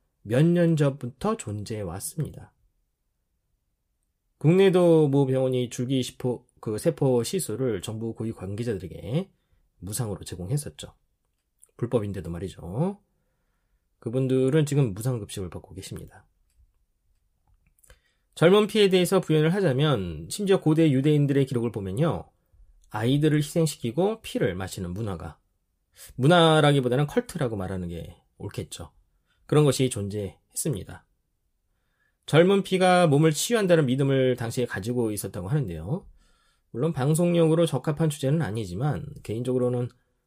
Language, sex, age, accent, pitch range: Korean, male, 20-39, native, 100-155 Hz